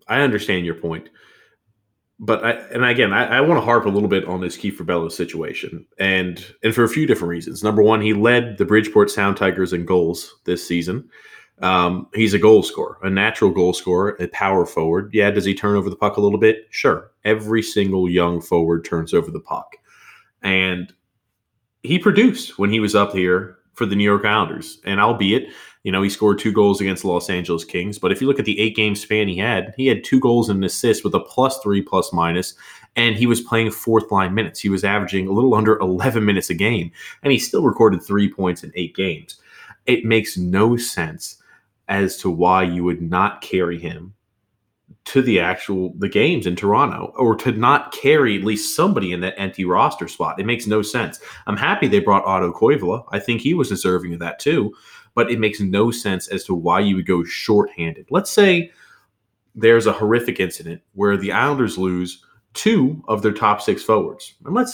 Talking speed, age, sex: 210 wpm, 30-49, male